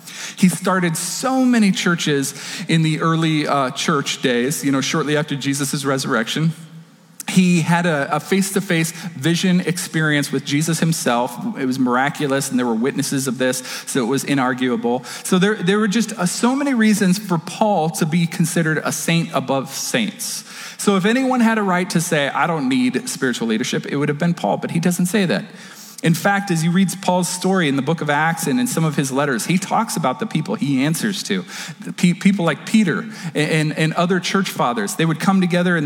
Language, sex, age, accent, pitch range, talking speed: English, male, 40-59, American, 155-200 Hz, 205 wpm